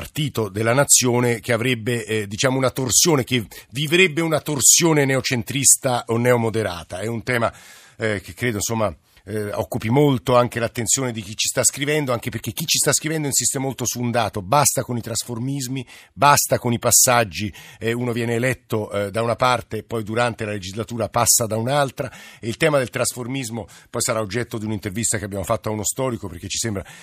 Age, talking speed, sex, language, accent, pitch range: 50-69, 195 wpm, male, Italian, native, 110-130 Hz